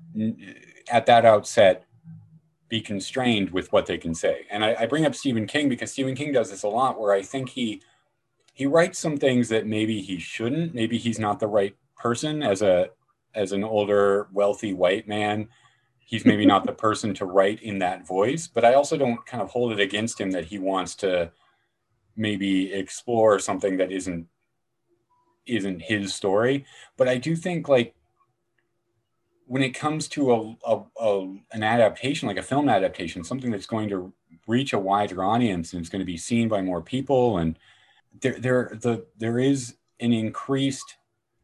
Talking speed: 180 wpm